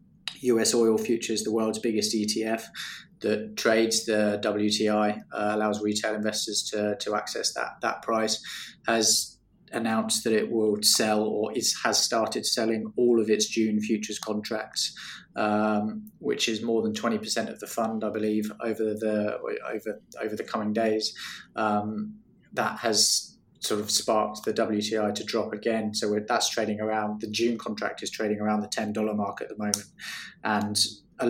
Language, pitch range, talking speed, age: English, 105-110 Hz, 170 wpm, 20-39